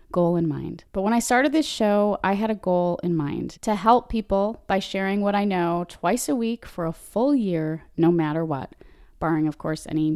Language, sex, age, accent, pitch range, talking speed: English, female, 20-39, American, 180-225 Hz, 220 wpm